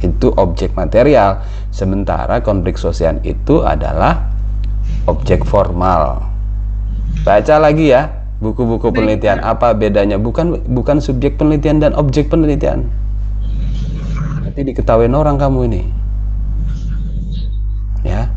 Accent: native